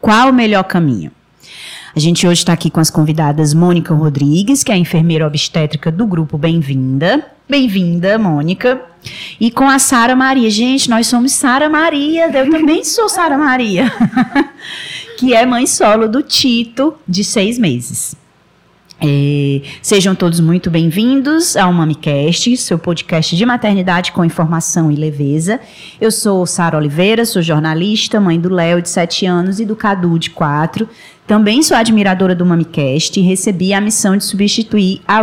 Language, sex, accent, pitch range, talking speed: Portuguese, female, Brazilian, 170-225 Hz, 155 wpm